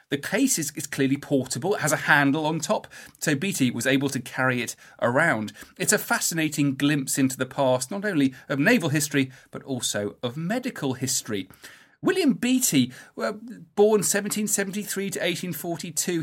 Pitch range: 130-160 Hz